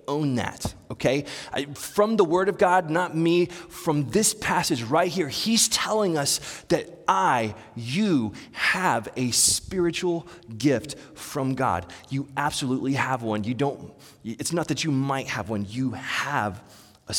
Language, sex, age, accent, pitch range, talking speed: English, male, 30-49, American, 110-160 Hz, 145 wpm